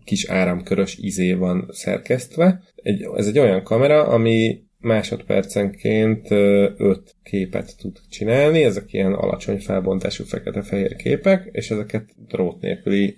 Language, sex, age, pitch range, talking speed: Hungarian, male, 30-49, 95-110 Hz, 115 wpm